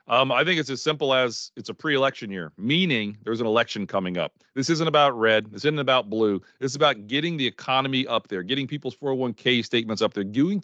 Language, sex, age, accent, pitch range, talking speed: English, male, 40-59, American, 115-175 Hz, 220 wpm